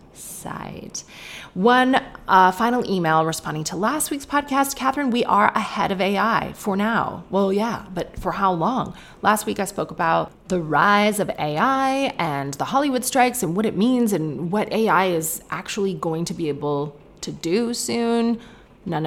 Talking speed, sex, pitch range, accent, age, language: 170 wpm, female, 165-235 Hz, American, 30-49, English